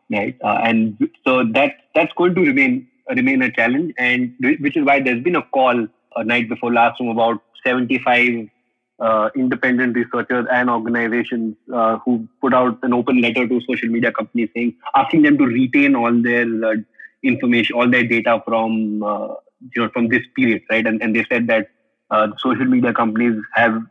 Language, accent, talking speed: English, Indian, 185 wpm